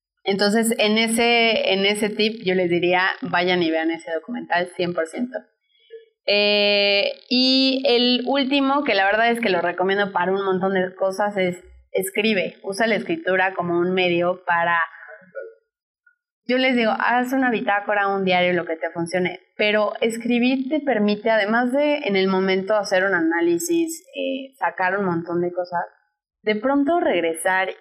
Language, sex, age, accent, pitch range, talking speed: Spanish, female, 20-39, Mexican, 180-240 Hz, 160 wpm